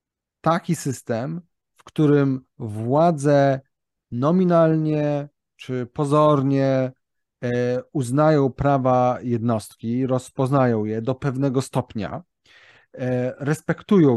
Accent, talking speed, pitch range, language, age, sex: native, 70 wpm, 120-150 Hz, Polish, 30-49, male